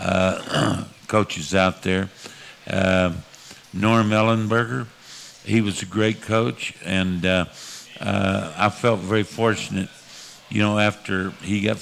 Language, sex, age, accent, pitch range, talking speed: English, male, 60-79, American, 95-110 Hz, 120 wpm